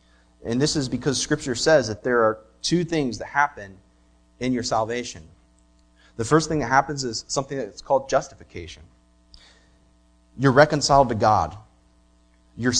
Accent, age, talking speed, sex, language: American, 30-49, 145 wpm, male, English